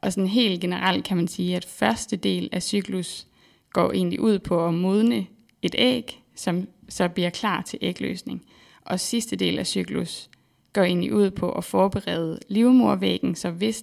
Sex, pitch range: female, 170-210 Hz